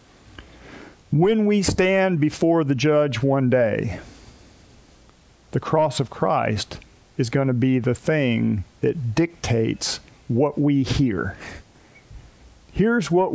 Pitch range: 115-155 Hz